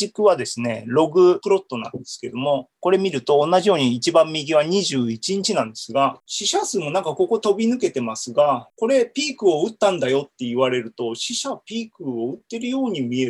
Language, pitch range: Japanese, 125-205 Hz